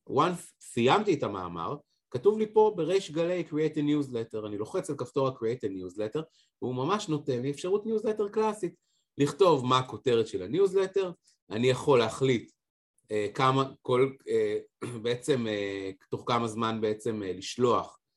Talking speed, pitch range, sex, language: 150 wpm, 110-160 Hz, male, Hebrew